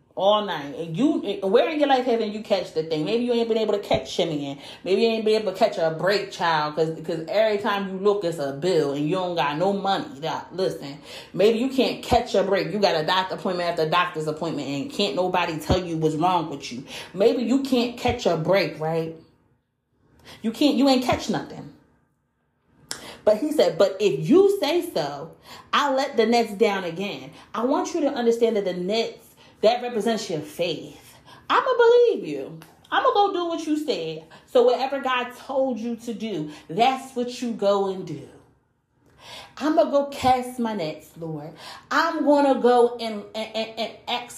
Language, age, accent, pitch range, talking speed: English, 30-49, American, 175-245 Hz, 205 wpm